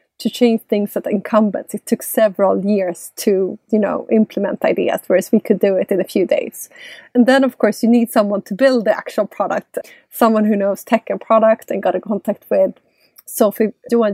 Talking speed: 210 wpm